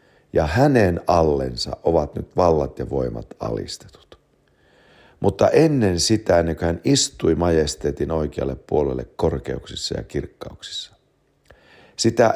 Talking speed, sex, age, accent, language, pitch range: 110 wpm, male, 60-79, Finnish, English, 75-115 Hz